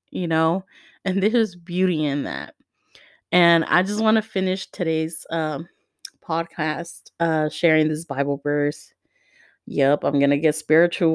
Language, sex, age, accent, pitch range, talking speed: English, female, 20-39, American, 155-190 Hz, 145 wpm